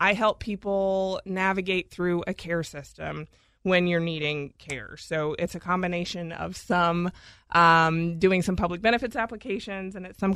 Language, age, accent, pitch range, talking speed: English, 20-39, American, 170-205 Hz, 155 wpm